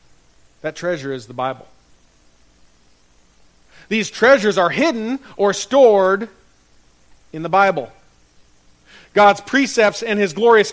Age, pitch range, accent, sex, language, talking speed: 40-59, 130-205 Hz, American, male, English, 105 wpm